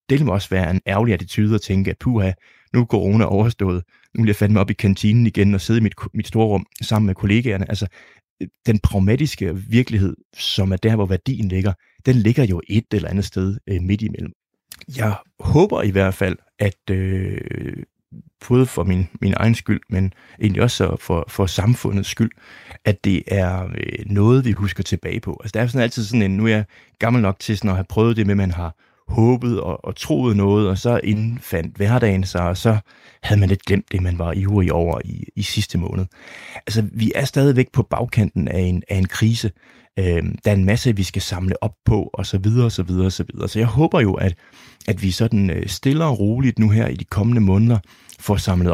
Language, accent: Danish, native